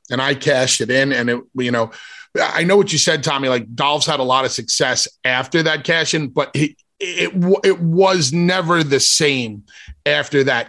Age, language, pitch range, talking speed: 30-49, English, 135-180 Hz, 200 wpm